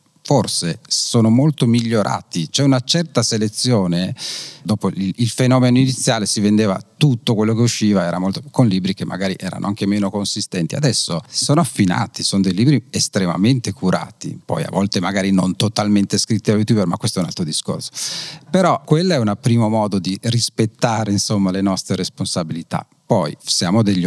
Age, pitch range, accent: 40-59, 100-130 Hz, native